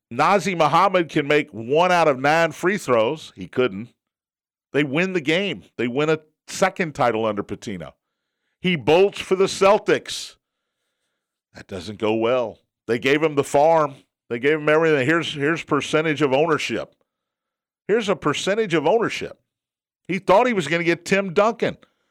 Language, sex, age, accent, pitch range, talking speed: English, male, 50-69, American, 125-190 Hz, 165 wpm